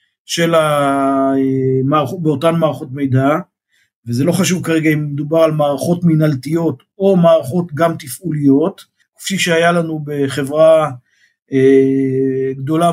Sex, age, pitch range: male, 50-69, 140-180 Hz